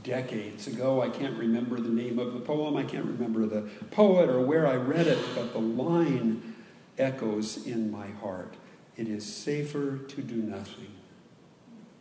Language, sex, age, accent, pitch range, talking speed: English, male, 50-69, American, 135-230 Hz, 165 wpm